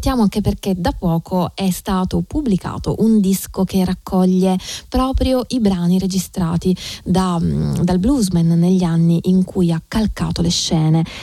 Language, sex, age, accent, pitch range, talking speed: Italian, female, 20-39, native, 170-220 Hz, 140 wpm